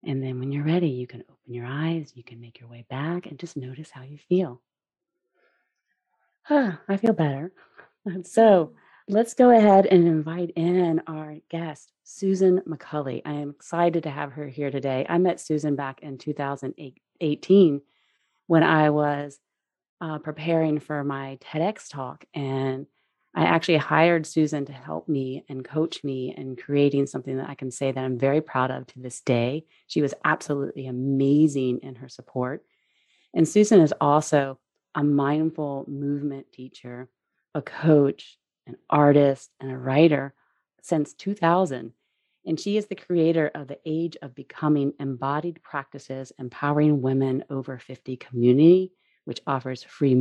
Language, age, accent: English, 30-49, American